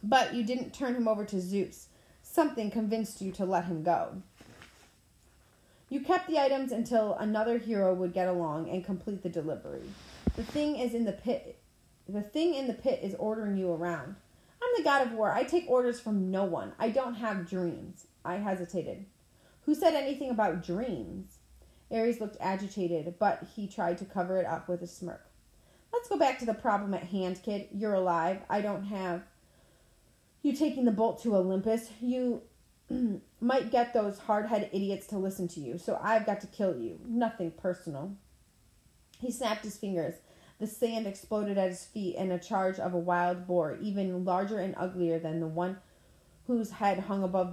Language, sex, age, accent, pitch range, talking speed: English, female, 30-49, American, 175-225 Hz, 185 wpm